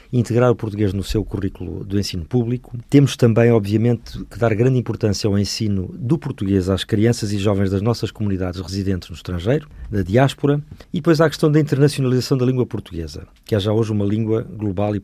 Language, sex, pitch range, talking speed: Portuguese, male, 100-130 Hz, 195 wpm